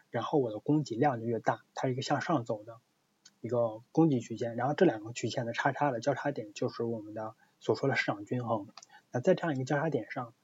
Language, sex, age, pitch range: Chinese, male, 20-39, 115-150 Hz